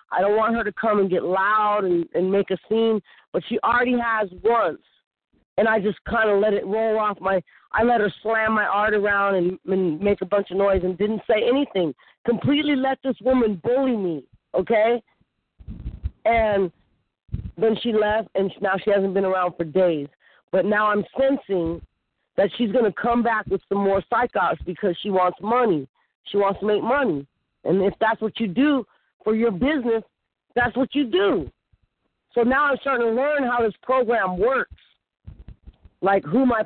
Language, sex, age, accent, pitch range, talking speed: English, female, 40-59, American, 195-250 Hz, 190 wpm